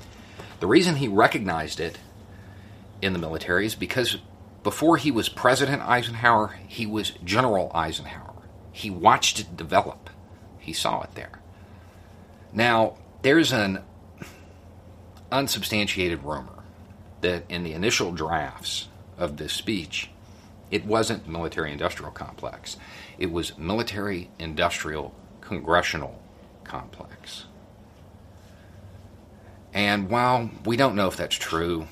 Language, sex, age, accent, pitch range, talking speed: English, male, 50-69, American, 90-110 Hz, 105 wpm